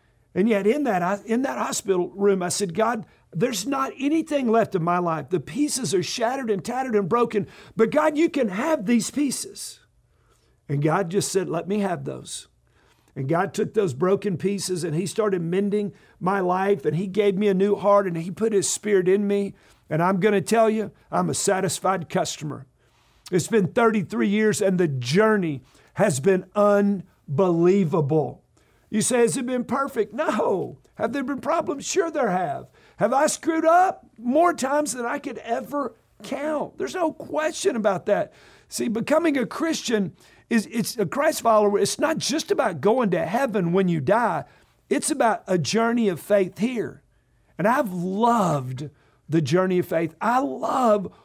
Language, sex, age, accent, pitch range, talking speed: English, male, 50-69, American, 185-240 Hz, 175 wpm